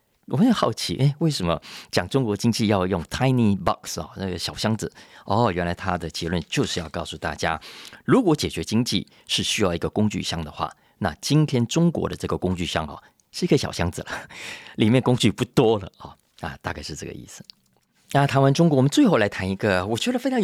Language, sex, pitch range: Chinese, male, 90-130 Hz